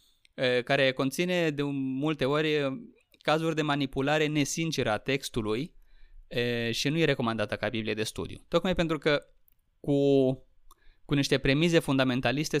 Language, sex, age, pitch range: Romanian, male, 20-39, 115-140 Hz